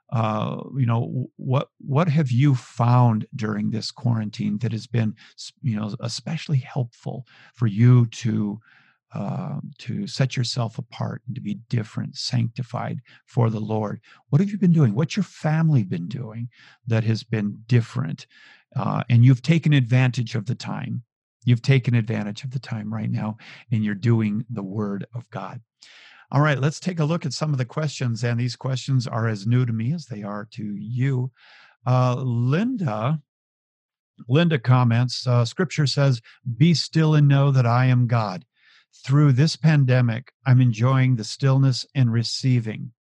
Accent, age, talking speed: American, 50-69, 165 wpm